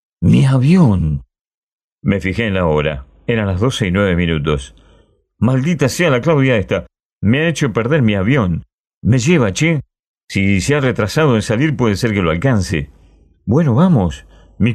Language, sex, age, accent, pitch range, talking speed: Spanish, male, 40-59, Argentinian, 90-120 Hz, 165 wpm